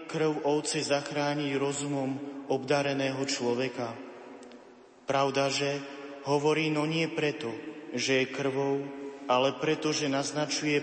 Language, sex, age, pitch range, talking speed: Slovak, male, 30-49, 140-150 Hz, 105 wpm